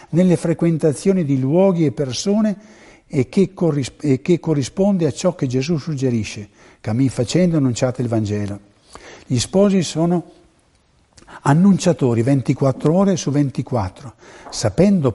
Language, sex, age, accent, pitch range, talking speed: Italian, male, 60-79, native, 115-175 Hz, 110 wpm